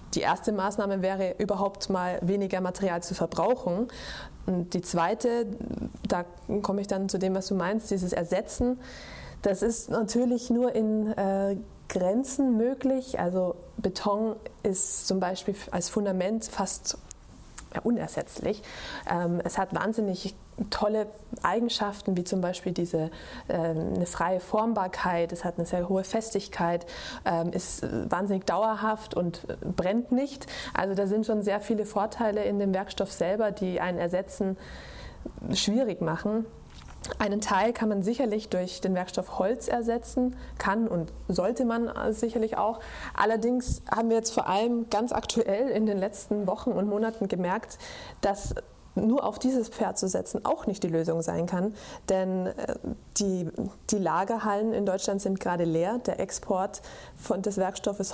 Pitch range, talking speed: 185-225 Hz, 145 wpm